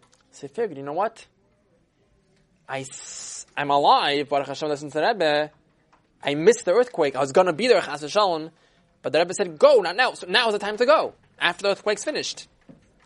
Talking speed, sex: 170 wpm, male